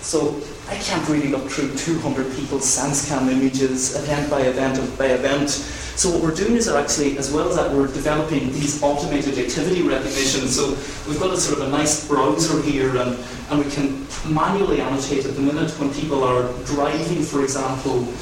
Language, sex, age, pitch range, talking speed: English, male, 30-49, 135-155 Hz, 185 wpm